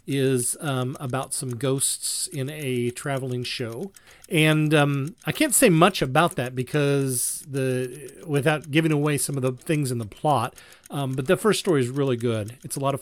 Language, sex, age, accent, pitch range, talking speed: English, male, 40-59, American, 125-155 Hz, 190 wpm